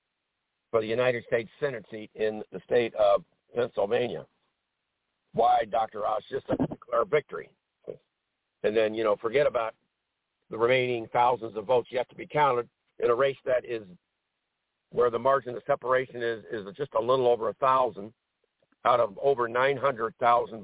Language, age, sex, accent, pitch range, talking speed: English, 60-79, male, American, 125-165 Hz, 155 wpm